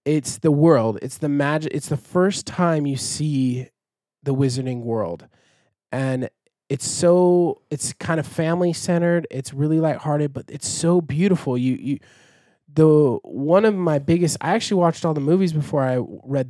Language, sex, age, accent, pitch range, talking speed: English, male, 20-39, American, 135-170 Hz, 165 wpm